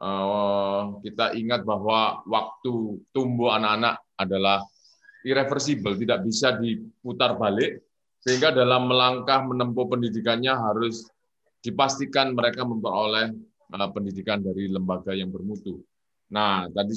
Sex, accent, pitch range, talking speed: male, native, 100-130 Hz, 105 wpm